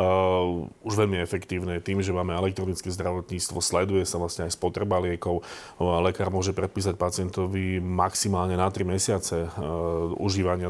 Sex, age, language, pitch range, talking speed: male, 30-49, Slovak, 90-100 Hz, 140 wpm